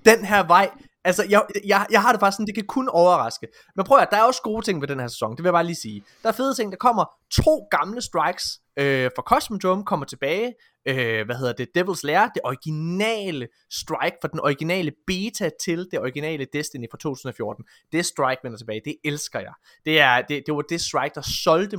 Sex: male